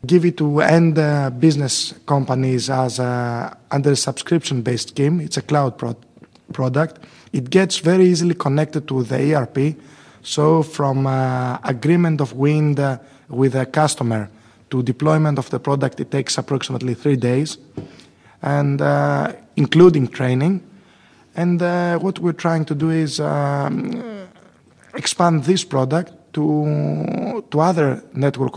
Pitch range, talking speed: 130-160 Hz, 140 wpm